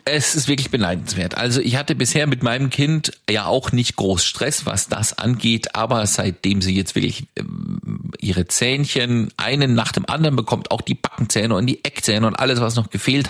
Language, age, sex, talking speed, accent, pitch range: German, 40-59, male, 190 wpm, German, 105-140 Hz